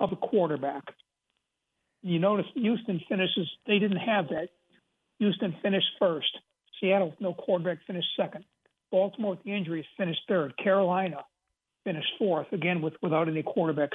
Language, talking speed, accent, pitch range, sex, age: English, 145 wpm, American, 175-220 Hz, male, 60-79